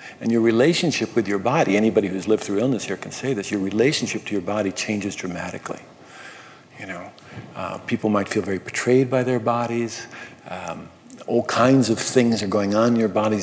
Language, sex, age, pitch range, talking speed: English, male, 50-69, 100-120 Hz, 195 wpm